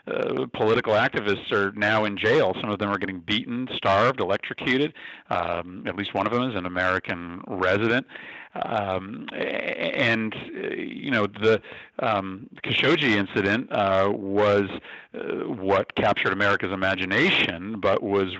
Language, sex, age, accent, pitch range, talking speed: English, male, 50-69, American, 90-110 Hz, 135 wpm